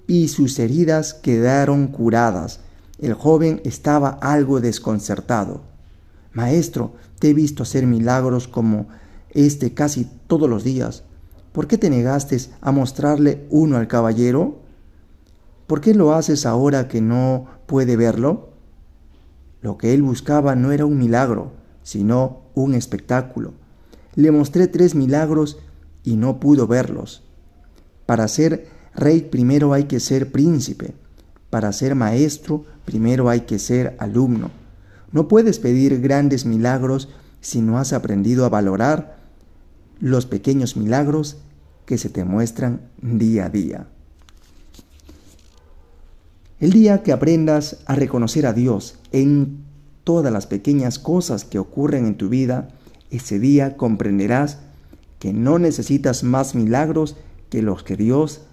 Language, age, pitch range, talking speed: Spanish, 40-59, 100-145 Hz, 130 wpm